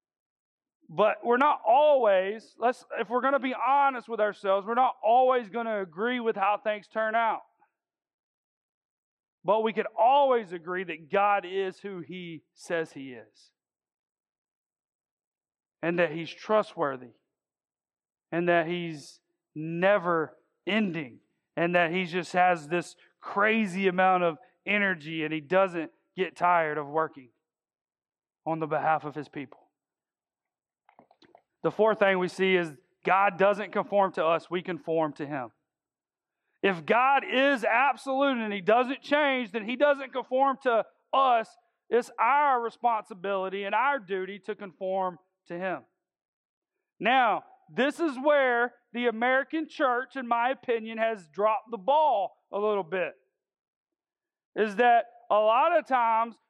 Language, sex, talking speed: English, male, 140 wpm